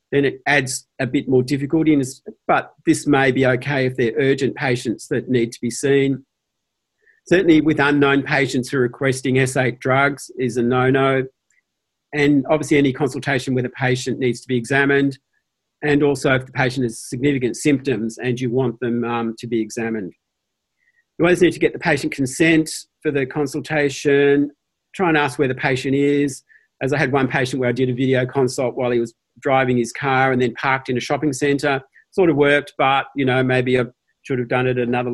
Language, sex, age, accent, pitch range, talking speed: English, male, 50-69, Australian, 125-145 Hz, 200 wpm